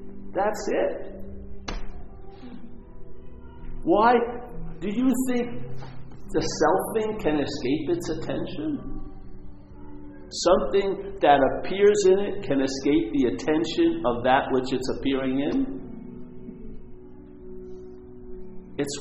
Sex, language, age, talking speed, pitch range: male, English, 50-69, 90 wpm, 125-190 Hz